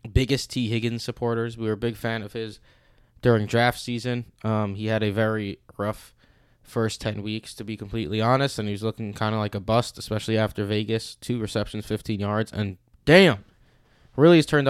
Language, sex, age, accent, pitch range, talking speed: English, male, 20-39, American, 110-130 Hz, 195 wpm